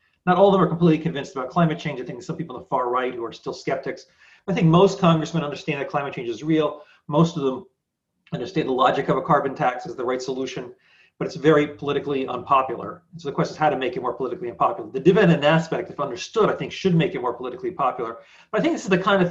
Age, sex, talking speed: 40-59, male, 260 wpm